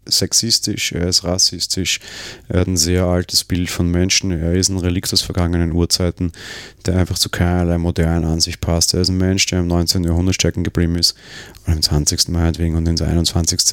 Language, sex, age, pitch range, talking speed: German, male, 30-49, 85-100 Hz, 200 wpm